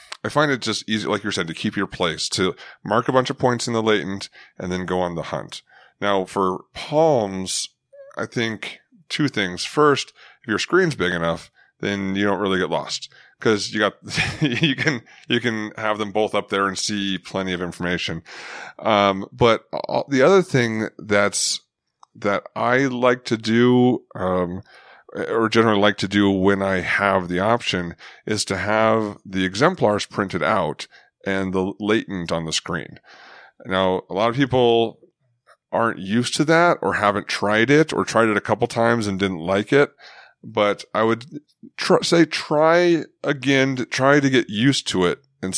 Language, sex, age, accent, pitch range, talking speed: English, male, 30-49, American, 95-125 Hz, 180 wpm